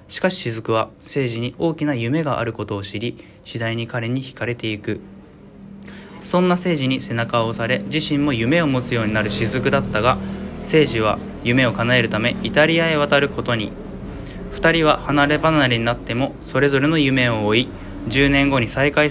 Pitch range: 110-150 Hz